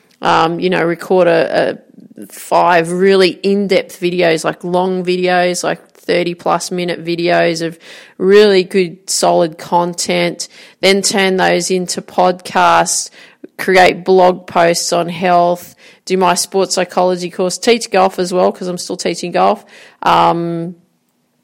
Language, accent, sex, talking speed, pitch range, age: English, Australian, female, 135 wpm, 175-195 Hz, 30-49